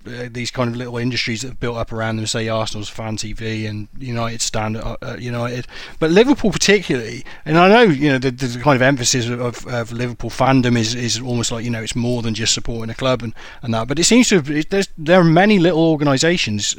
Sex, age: male, 30-49